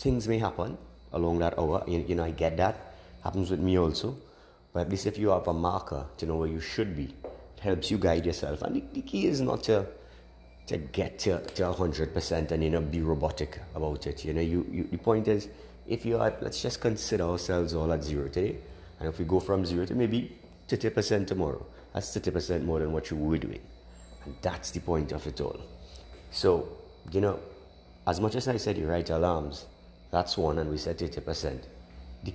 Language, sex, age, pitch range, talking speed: English, male, 30-49, 75-100 Hz, 215 wpm